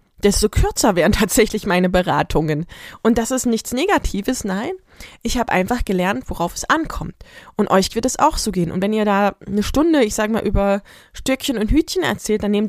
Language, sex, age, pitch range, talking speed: German, female, 20-39, 190-260 Hz, 200 wpm